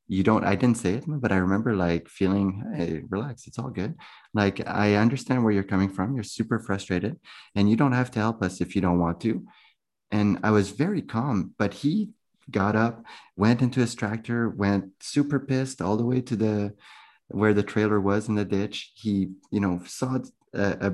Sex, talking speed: male, 205 wpm